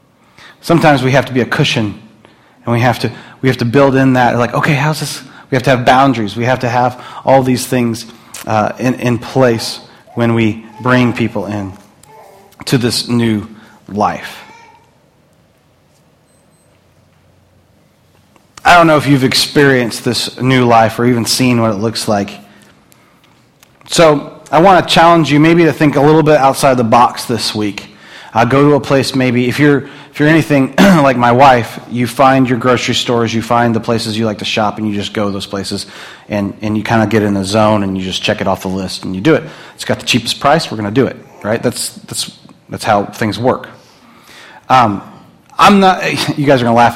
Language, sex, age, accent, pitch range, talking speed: English, male, 30-49, American, 110-145 Hz, 205 wpm